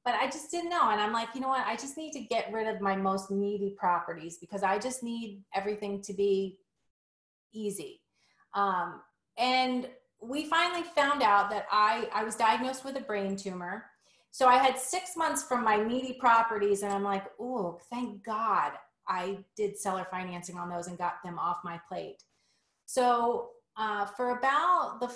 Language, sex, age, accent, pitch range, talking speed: English, female, 30-49, American, 195-245 Hz, 185 wpm